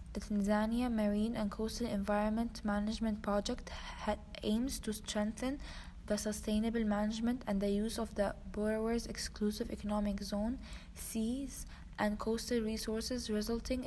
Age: 20-39